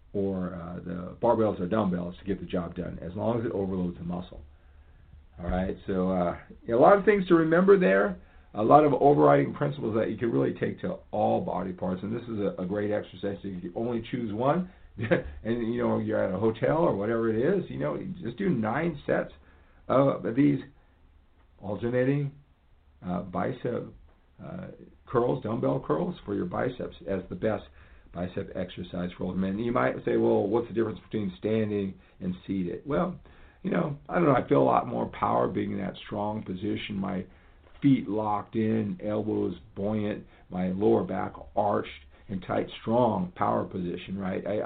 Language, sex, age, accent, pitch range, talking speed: English, male, 50-69, American, 90-110 Hz, 185 wpm